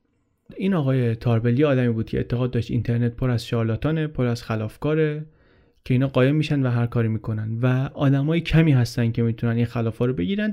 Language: Persian